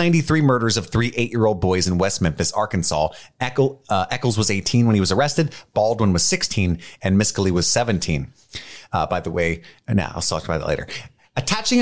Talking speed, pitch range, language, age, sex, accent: 190 wpm, 90-120 Hz, English, 30-49, male, American